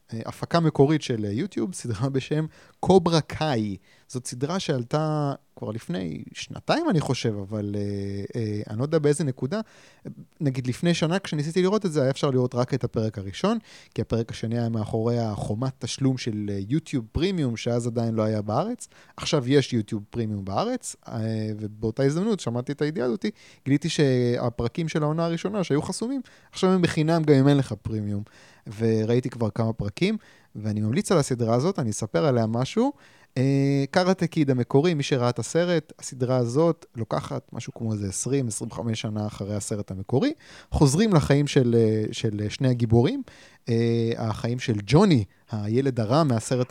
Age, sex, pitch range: 30-49, male, 115-155 Hz